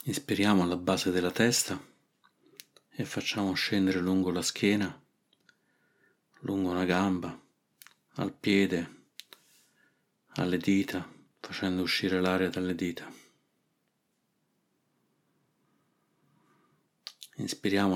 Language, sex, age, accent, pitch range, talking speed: Italian, male, 40-59, native, 90-100 Hz, 80 wpm